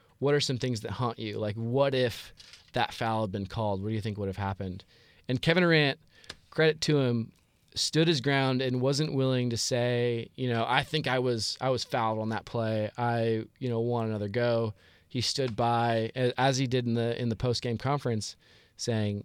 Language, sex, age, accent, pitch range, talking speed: English, male, 20-39, American, 105-125 Hz, 210 wpm